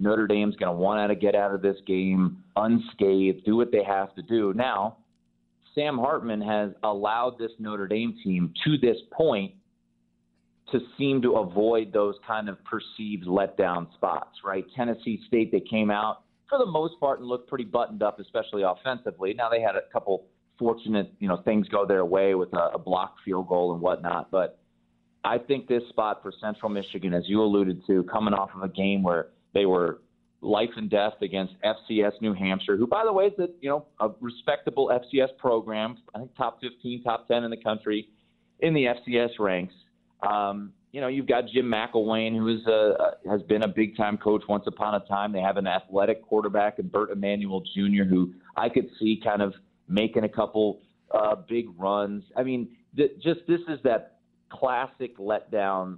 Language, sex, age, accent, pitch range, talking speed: English, male, 30-49, American, 95-115 Hz, 190 wpm